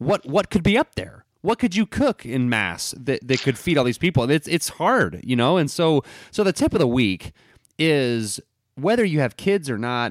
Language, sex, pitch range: English, male, 105-140 Hz